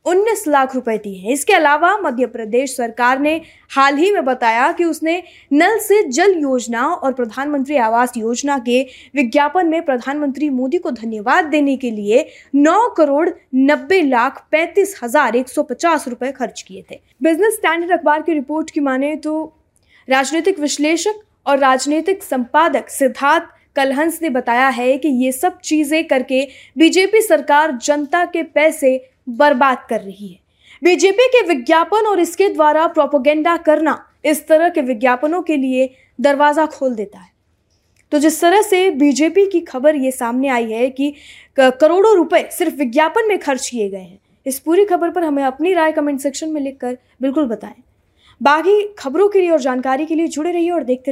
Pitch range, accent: 260-330 Hz, native